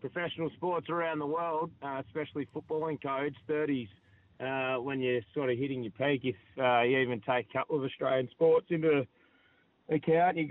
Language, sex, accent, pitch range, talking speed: English, male, Australian, 120-140 Hz, 190 wpm